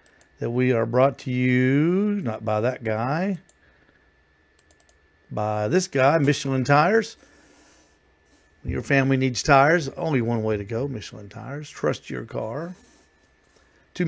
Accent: American